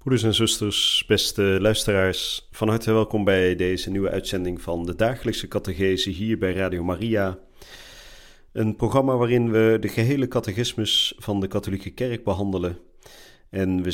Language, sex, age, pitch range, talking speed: Dutch, male, 40-59, 95-110 Hz, 145 wpm